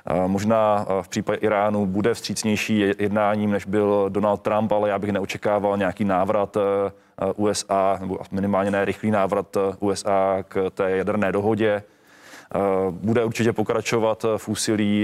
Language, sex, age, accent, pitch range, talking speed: Czech, male, 20-39, native, 100-110 Hz, 130 wpm